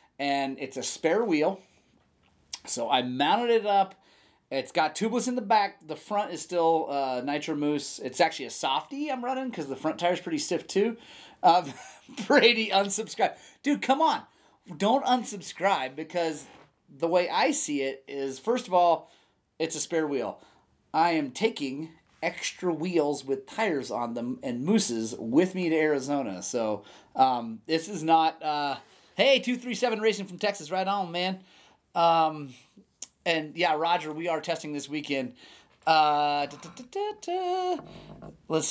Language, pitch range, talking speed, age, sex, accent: English, 150-195 Hz, 155 wpm, 30-49, male, American